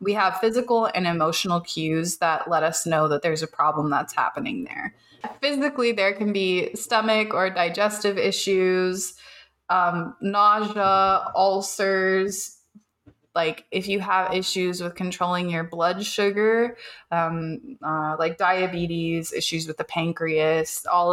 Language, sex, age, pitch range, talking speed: English, female, 20-39, 165-195 Hz, 135 wpm